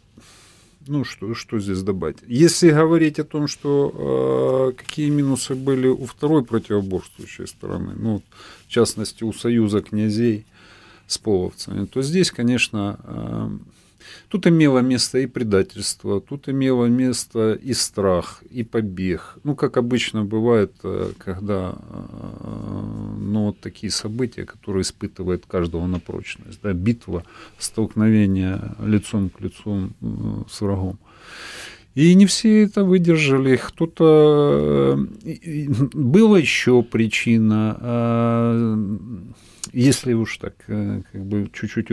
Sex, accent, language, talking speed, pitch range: male, native, Ukrainian, 115 wpm, 100-135 Hz